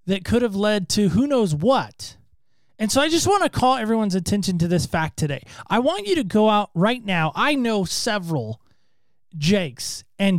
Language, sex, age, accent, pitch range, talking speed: English, male, 20-39, American, 145-225 Hz, 195 wpm